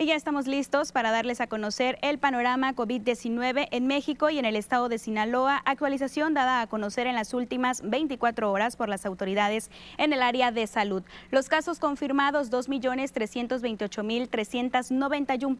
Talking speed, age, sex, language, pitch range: 155 wpm, 20-39, female, Spanish, 235-275 Hz